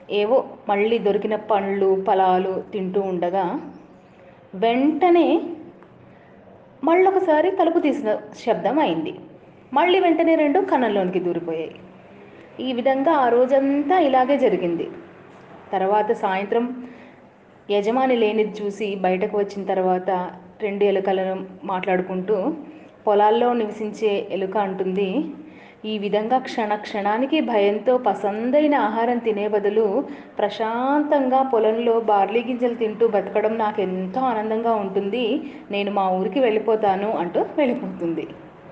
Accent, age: native, 20-39